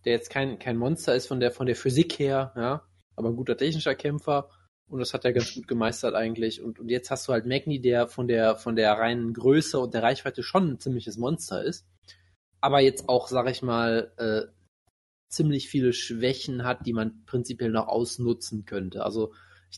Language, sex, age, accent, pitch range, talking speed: German, male, 20-39, German, 115-135 Hz, 195 wpm